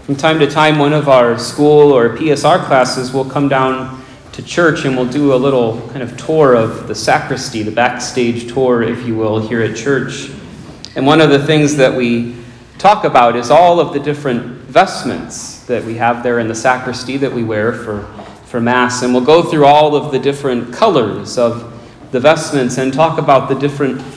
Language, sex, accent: English, male, American